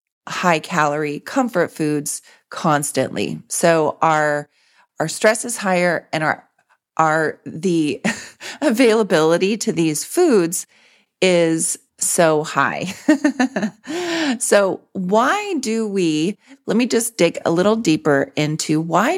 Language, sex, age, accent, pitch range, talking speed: English, female, 30-49, American, 155-210 Hz, 110 wpm